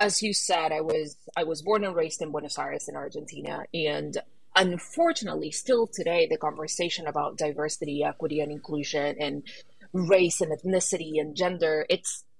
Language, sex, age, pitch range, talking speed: English, female, 30-49, 155-210 Hz, 160 wpm